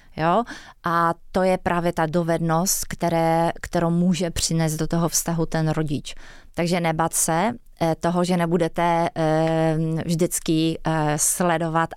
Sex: female